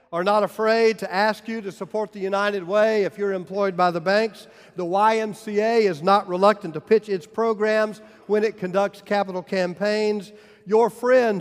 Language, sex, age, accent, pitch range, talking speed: English, male, 50-69, American, 170-205 Hz, 175 wpm